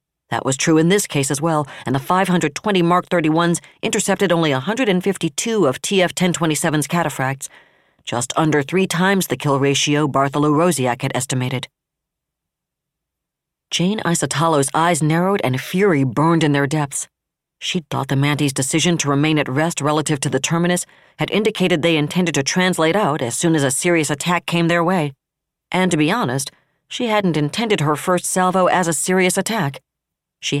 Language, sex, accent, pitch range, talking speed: English, female, American, 140-185 Hz, 170 wpm